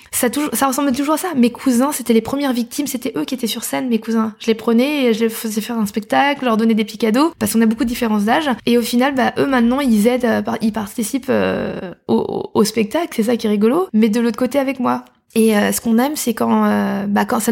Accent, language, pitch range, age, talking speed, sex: French, French, 220-255 Hz, 20-39, 265 wpm, female